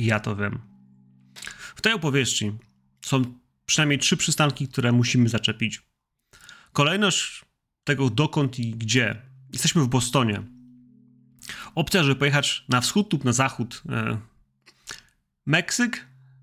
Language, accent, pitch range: Polish, native, 110-140 Hz